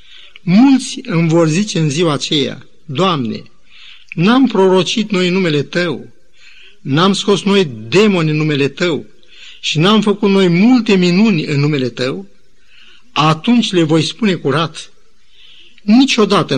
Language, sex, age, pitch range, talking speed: Romanian, male, 50-69, 150-205 Hz, 130 wpm